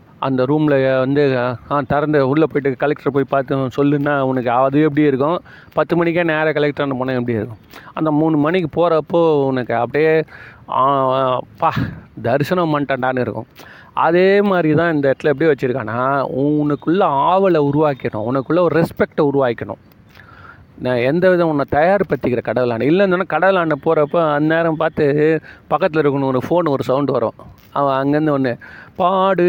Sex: male